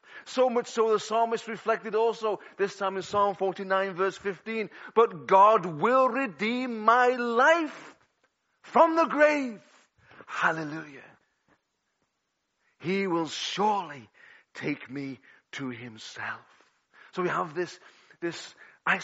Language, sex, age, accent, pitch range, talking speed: English, male, 40-59, British, 185-265 Hz, 115 wpm